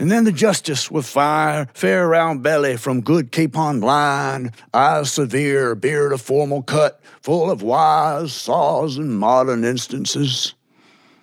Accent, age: American, 60-79